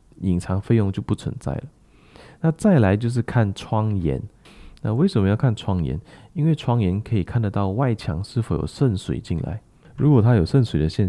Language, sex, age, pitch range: Chinese, male, 20-39, 90-115 Hz